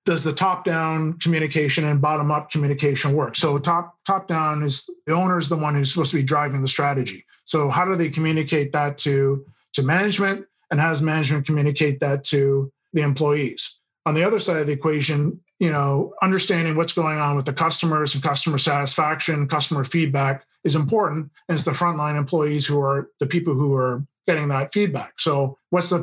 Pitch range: 145-165 Hz